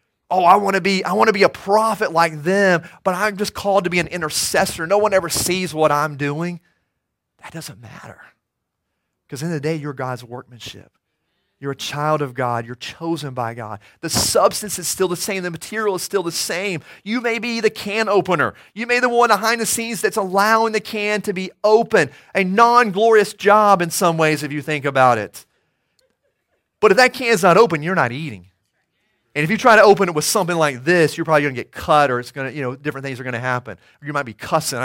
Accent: American